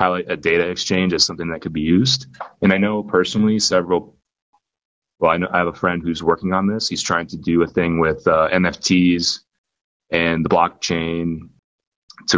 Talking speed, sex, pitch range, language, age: 195 wpm, male, 80-95 Hz, English, 30-49